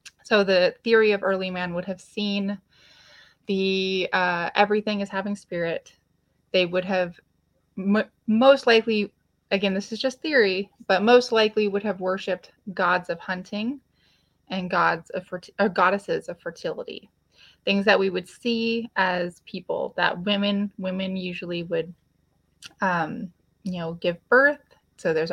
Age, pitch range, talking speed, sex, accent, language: 20-39, 185-215 Hz, 145 wpm, female, American, English